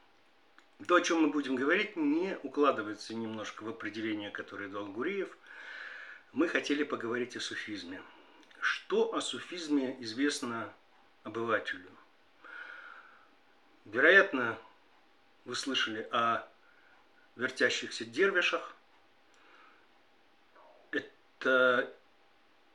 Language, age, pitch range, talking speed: Russian, 50-69, 120-165 Hz, 80 wpm